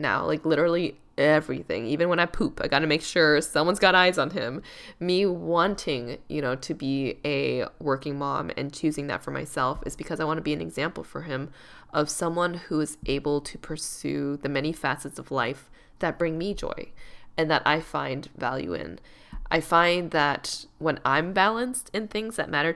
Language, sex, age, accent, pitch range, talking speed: English, female, 10-29, American, 145-175 Hz, 195 wpm